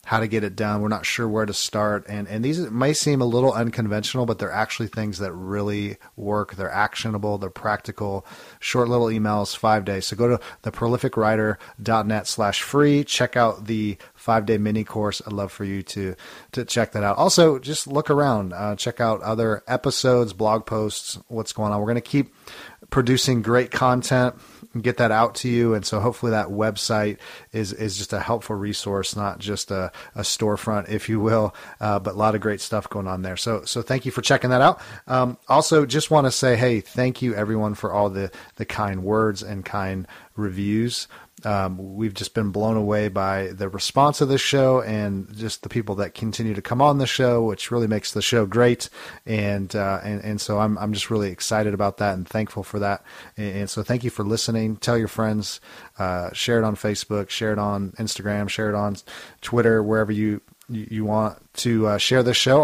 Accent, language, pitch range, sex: American, English, 105-120 Hz, male